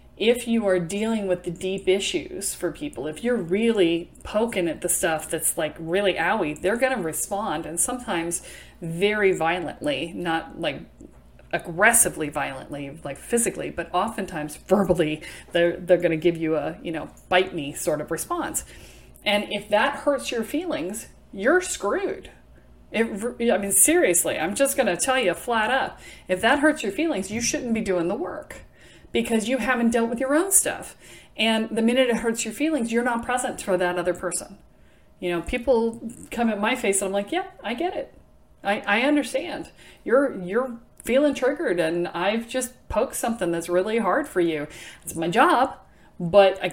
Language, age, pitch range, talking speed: English, 40-59, 175-250 Hz, 180 wpm